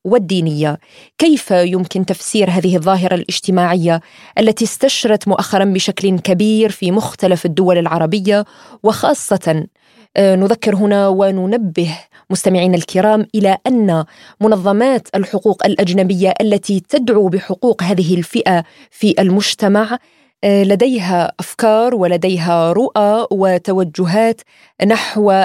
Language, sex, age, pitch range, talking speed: Arabic, female, 20-39, 185-220 Hz, 95 wpm